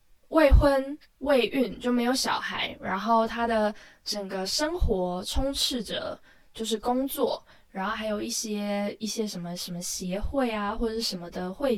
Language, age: Chinese, 10-29